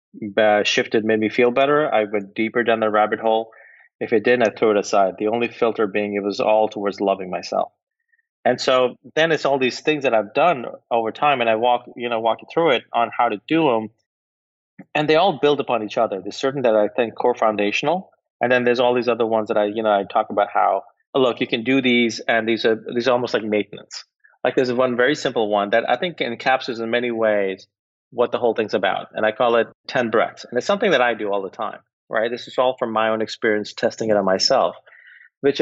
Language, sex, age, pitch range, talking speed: English, male, 30-49, 105-130 Hz, 240 wpm